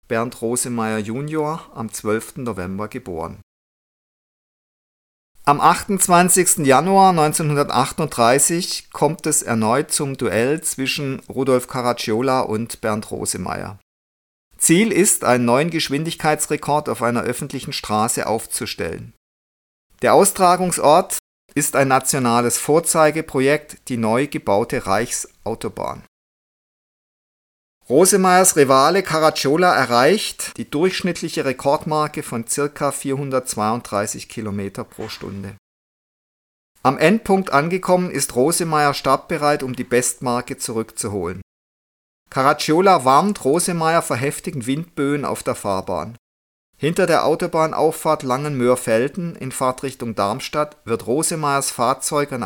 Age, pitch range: 50-69, 115-155 Hz